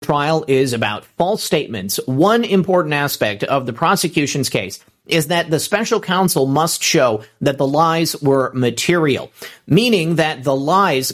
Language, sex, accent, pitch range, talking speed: English, male, American, 140-175 Hz, 150 wpm